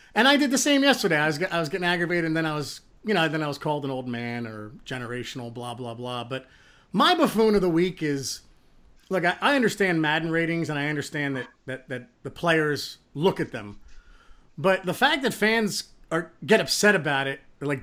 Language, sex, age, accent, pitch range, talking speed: English, male, 40-59, American, 135-175 Hz, 220 wpm